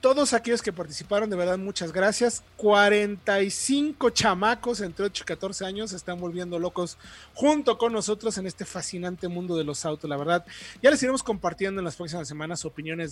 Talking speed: 185 wpm